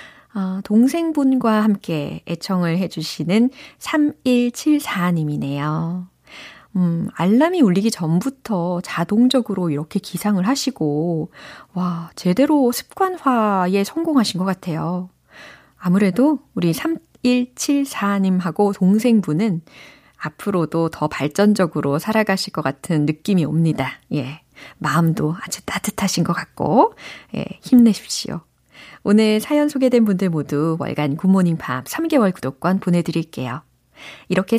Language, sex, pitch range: Korean, female, 170-245 Hz